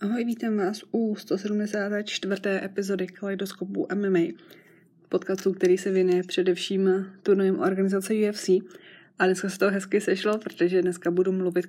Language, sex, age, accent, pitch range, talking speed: Czech, female, 20-39, native, 175-195 Hz, 135 wpm